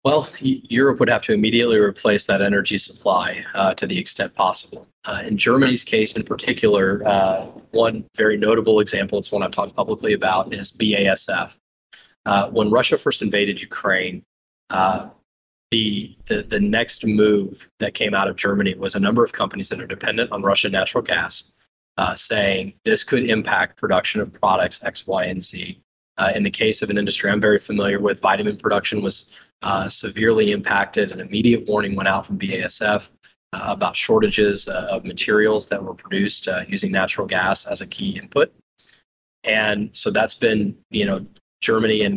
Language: English